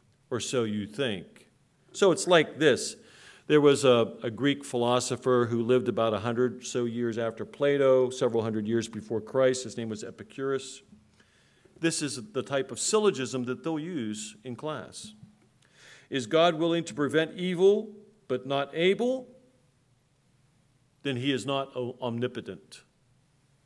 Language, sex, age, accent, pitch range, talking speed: English, male, 50-69, American, 125-160 Hz, 145 wpm